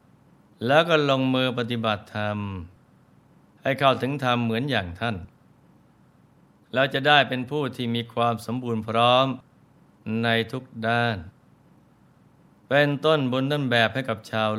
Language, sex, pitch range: Thai, male, 110-135 Hz